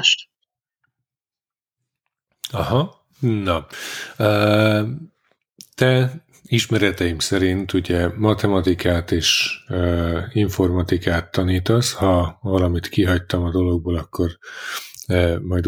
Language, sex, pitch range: Hungarian, male, 90-105 Hz